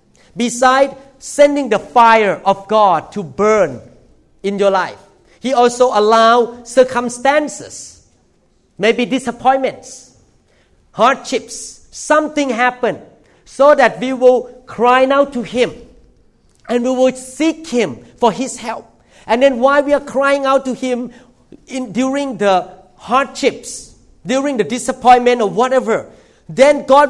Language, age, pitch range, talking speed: English, 50-69, 215-260 Hz, 125 wpm